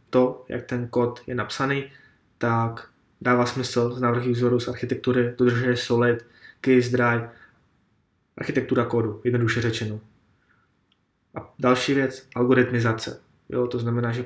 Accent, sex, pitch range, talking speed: native, male, 120-125 Hz, 125 wpm